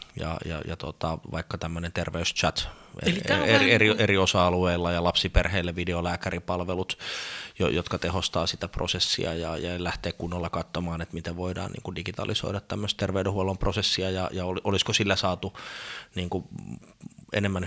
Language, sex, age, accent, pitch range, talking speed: Finnish, male, 30-49, native, 85-95 Hz, 130 wpm